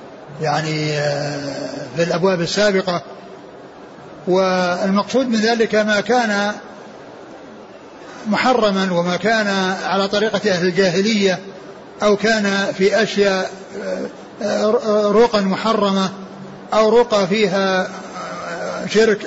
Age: 60-79